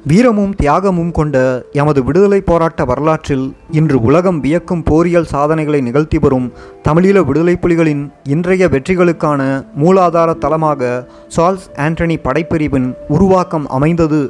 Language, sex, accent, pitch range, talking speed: Tamil, male, native, 135-170 Hz, 105 wpm